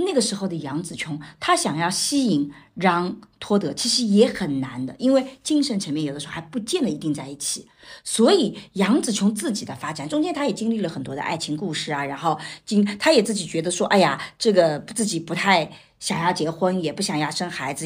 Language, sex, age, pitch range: Chinese, female, 50-69, 170-270 Hz